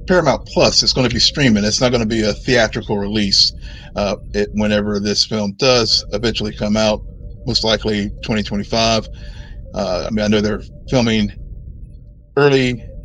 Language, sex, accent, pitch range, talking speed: English, male, American, 105-120 Hz, 160 wpm